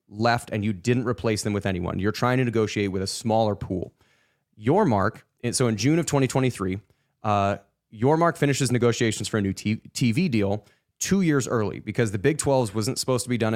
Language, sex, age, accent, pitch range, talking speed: English, male, 20-39, American, 105-130 Hz, 205 wpm